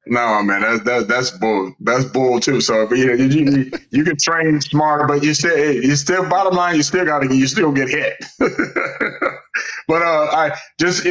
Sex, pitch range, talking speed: male, 130-150 Hz, 205 wpm